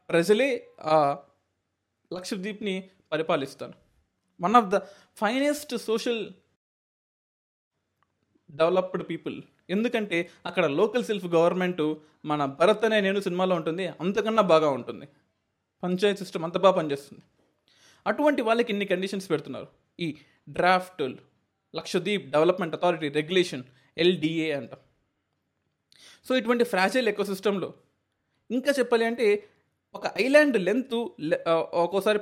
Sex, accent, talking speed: male, native, 100 wpm